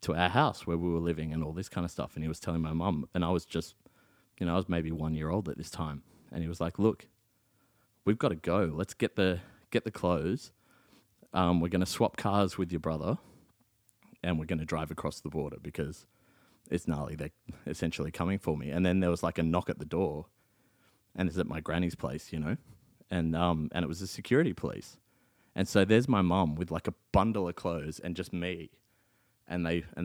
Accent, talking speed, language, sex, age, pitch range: Australian, 235 wpm, English, male, 30-49, 80-100 Hz